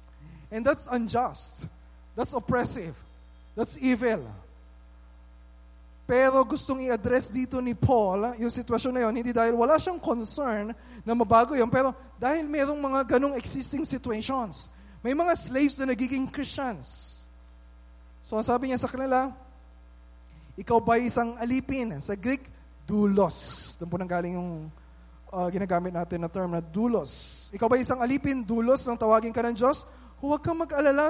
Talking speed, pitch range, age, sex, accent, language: 140 wpm, 195-265 Hz, 20-39, male, native, Filipino